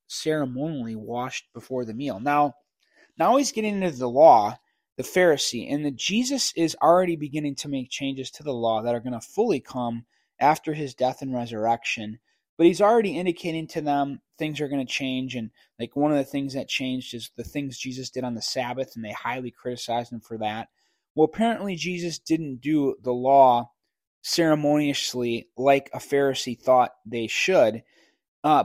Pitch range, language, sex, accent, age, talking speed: 125-165 Hz, English, male, American, 20-39, 180 wpm